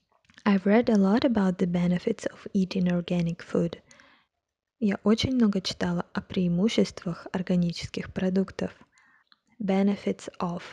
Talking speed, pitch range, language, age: 115 wpm, 180-215 Hz, Russian, 20-39